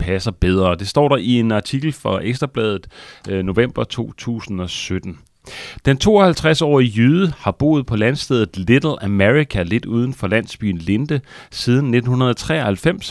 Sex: male